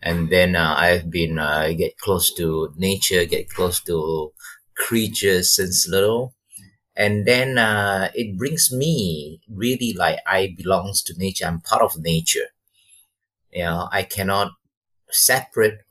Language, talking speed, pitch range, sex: English, 145 wpm, 90-110 Hz, male